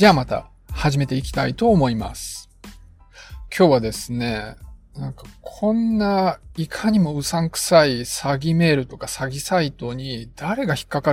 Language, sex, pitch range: Japanese, male, 125-170 Hz